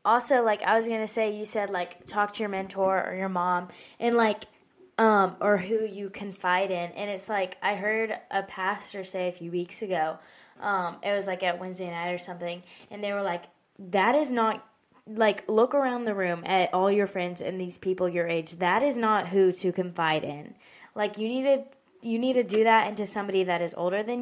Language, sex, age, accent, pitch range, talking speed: English, female, 10-29, American, 180-220 Hz, 220 wpm